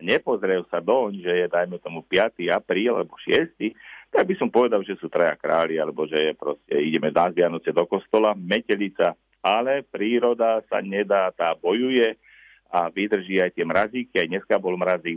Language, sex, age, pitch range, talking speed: Slovak, male, 50-69, 90-110 Hz, 175 wpm